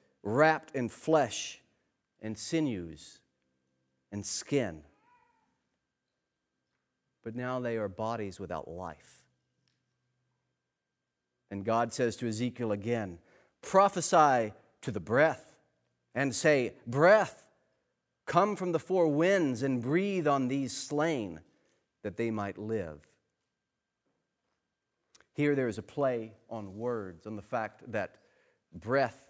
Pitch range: 100-135 Hz